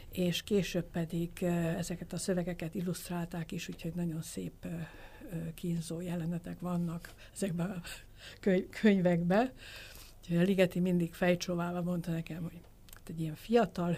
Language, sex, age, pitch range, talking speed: Hungarian, female, 60-79, 165-185 Hz, 110 wpm